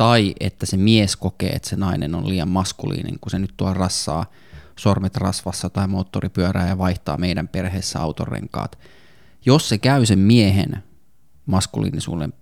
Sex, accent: male, native